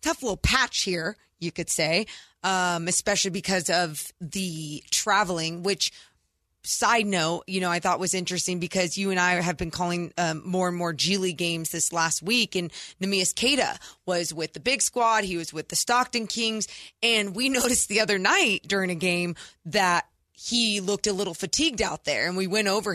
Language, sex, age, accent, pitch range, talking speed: English, female, 20-39, American, 175-210 Hz, 190 wpm